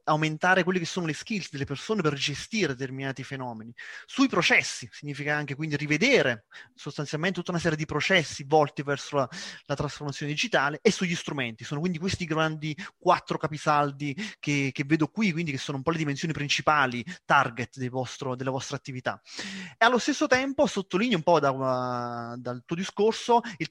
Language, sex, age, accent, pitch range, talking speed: Italian, male, 30-49, native, 135-170 Hz, 175 wpm